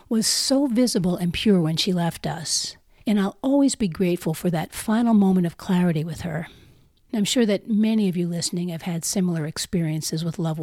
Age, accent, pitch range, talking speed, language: 50-69, American, 165-220 Hz, 200 wpm, English